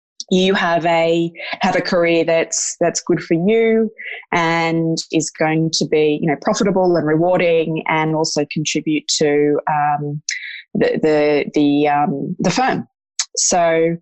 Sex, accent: female, Australian